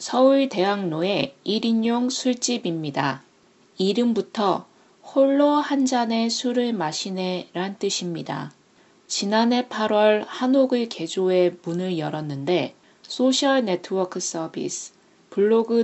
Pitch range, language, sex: 180-250 Hz, Korean, female